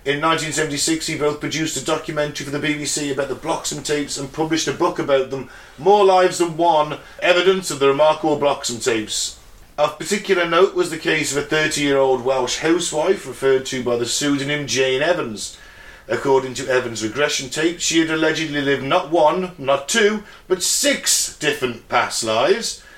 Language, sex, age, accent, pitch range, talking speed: English, male, 40-59, British, 130-170 Hz, 170 wpm